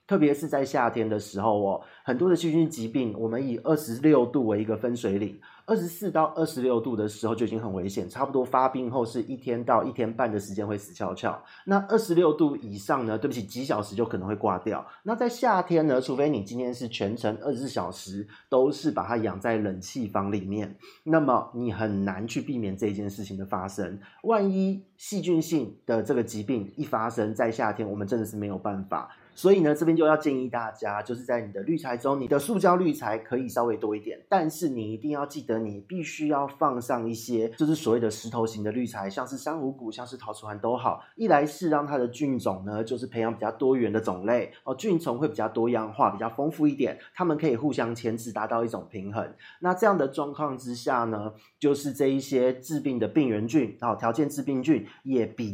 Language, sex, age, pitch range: Chinese, male, 30-49, 110-150 Hz